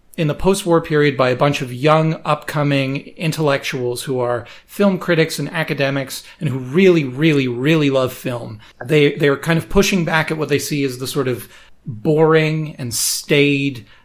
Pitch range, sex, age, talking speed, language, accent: 135-165 Hz, male, 30-49, 180 wpm, English, American